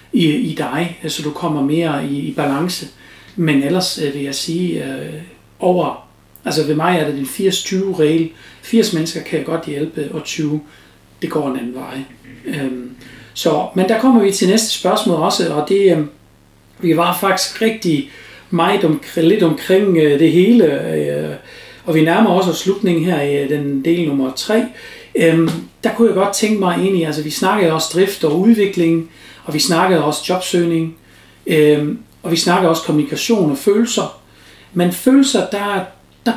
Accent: native